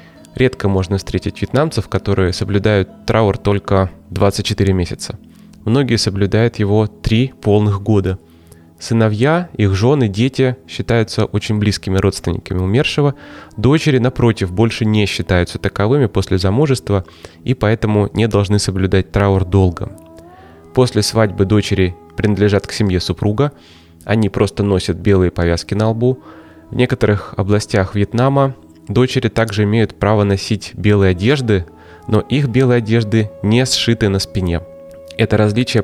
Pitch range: 95-115 Hz